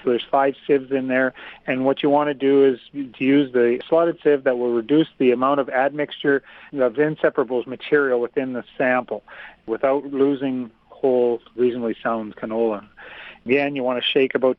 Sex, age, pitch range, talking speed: male, 40-59, 125-145 Hz, 175 wpm